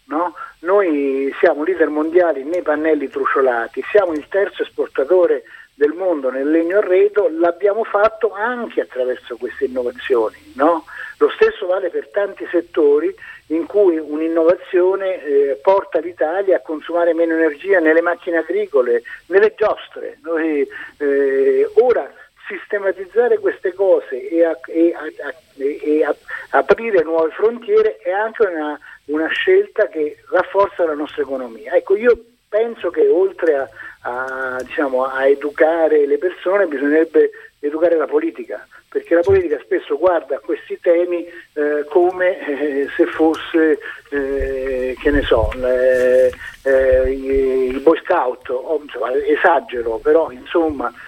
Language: Italian